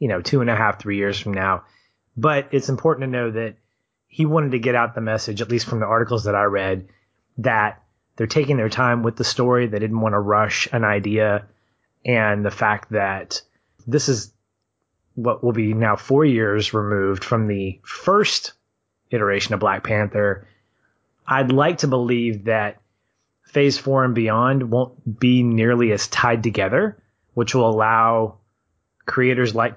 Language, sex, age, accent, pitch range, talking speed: English, male, 30-49, American, 105-125 Hz, 175 wpm